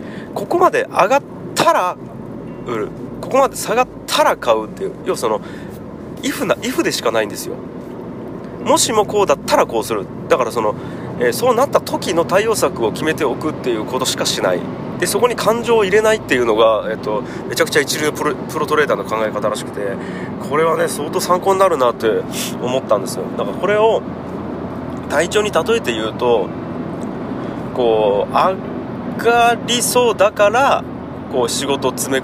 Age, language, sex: 30-49, Japanese, male